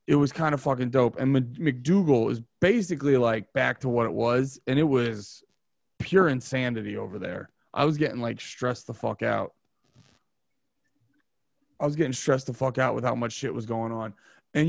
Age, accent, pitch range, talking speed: 30-49, American, 130-170 Hz, 190 wpm